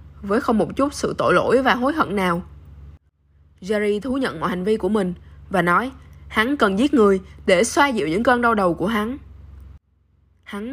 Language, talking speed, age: Vietnamese, 195 wpm, 10-29